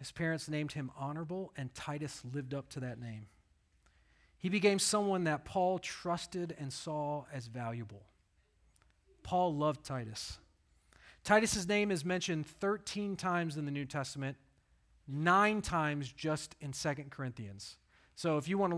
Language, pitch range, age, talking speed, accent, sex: English, 125-175 Hz, 40-59, 145 wpm, American, male